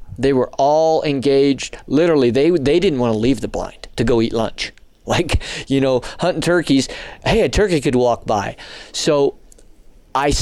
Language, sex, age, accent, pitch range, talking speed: English, male, 40-59, American, 115-150 Hz, 175 wpm